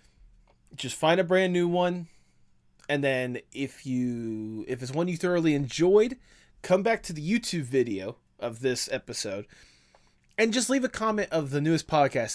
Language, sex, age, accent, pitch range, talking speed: English, male, 20-39, American, 120-170 Hz, 165 wpm